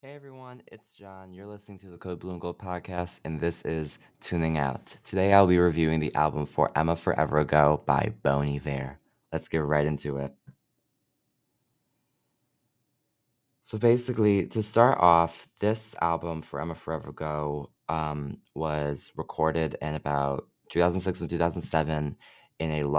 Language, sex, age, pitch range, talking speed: English, male, 20-39, 75-90 Hz, 140 wpm